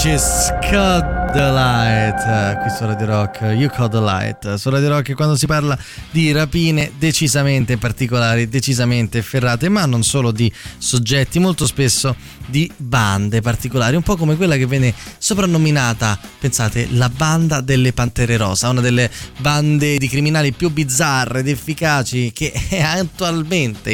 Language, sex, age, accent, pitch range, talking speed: Italian, male, 20-39, native, 115-150 Hz, 150 wpm